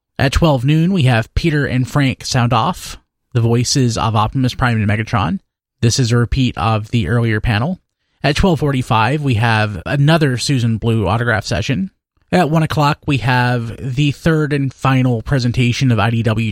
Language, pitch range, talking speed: English, 115-145 Hz, 175 wpm